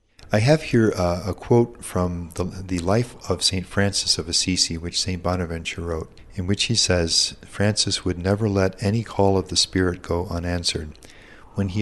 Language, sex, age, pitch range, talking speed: English, male, 50-69, 85-100 Hz, 185 wpm